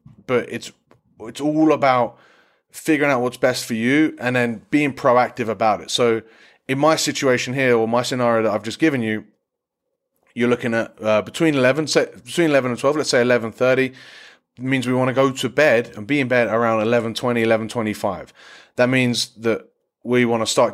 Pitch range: 115-135 Hz